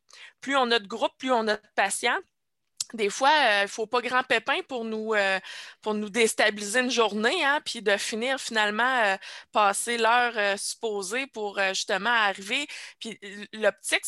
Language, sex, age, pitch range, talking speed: French, female, 20-39, 205-255 Hz, 185 wpm